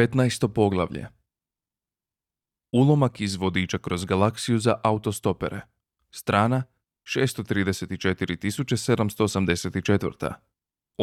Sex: male